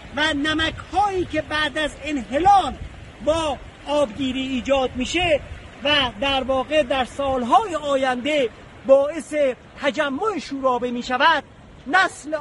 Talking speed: 105 wpm